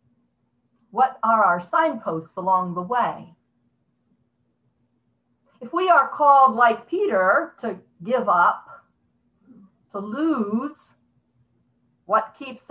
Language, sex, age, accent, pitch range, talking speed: English, female, 50-69, American, 170-265 Hz, 95 wpm